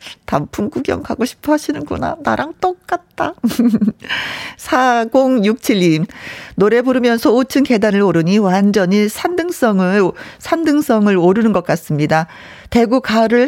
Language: Korean